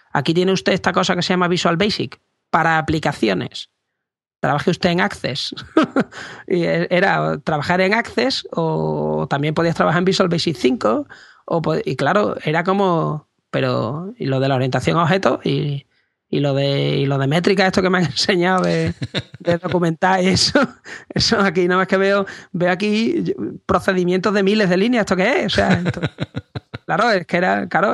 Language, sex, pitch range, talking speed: Spanish, male, 145-190 Hz, 175 wpm